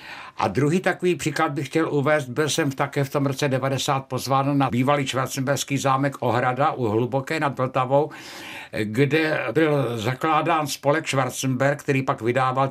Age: 60-79